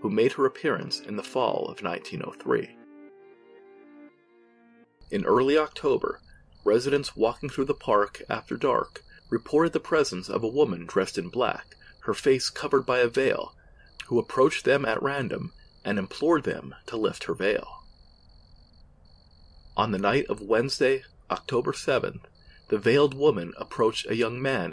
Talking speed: 145 wpm